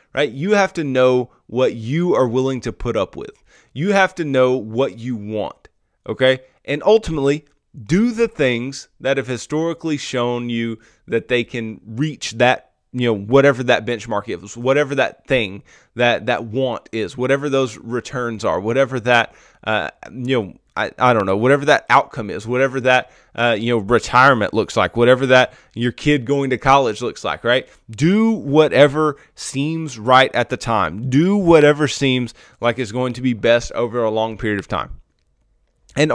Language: English